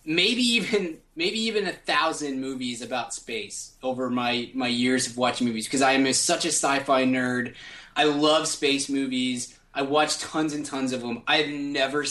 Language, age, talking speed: English, 20-39, 185 wpm